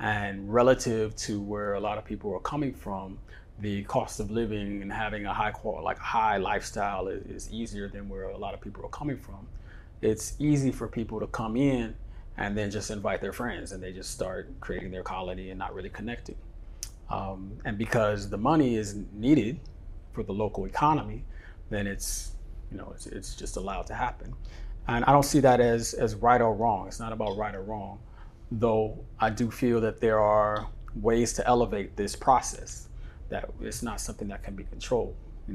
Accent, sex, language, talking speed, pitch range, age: American, male, English, 195 wpm, 100-120 Hz, 30-49